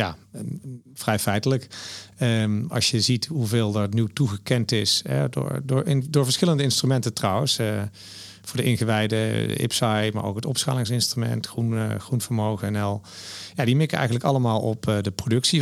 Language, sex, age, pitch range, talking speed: Dutch, male, 40-59, 105-130 Hz, 160 wpm